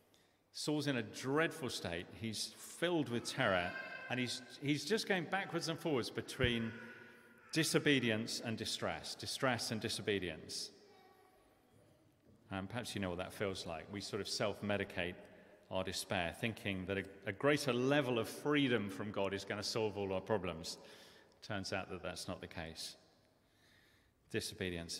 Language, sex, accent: English, male, British